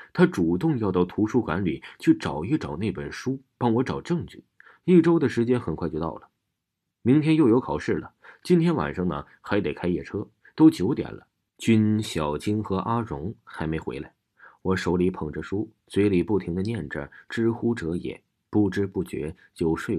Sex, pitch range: male, 90-125 Hz